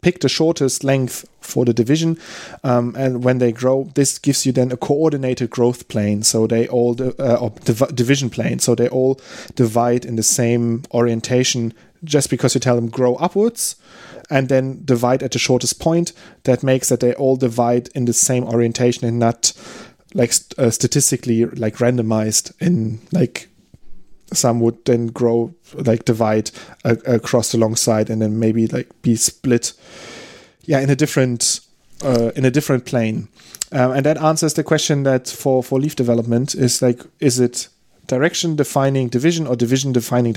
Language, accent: English, German